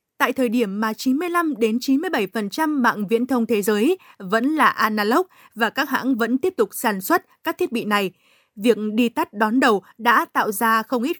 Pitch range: 220-275 Hz